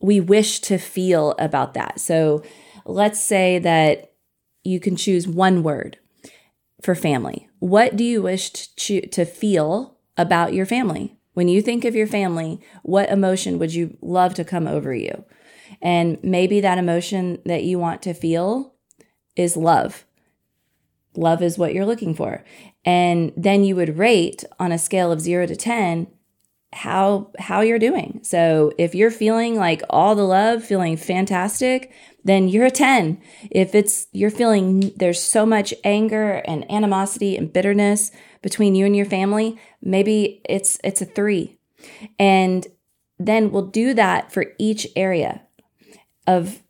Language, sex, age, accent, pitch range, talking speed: English, female, 30-49, American, 175-210 Hz, 155 wpm